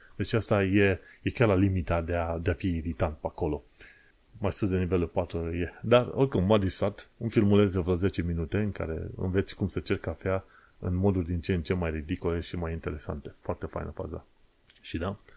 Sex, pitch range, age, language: male, 85-105 Hz, 30-49, Romanian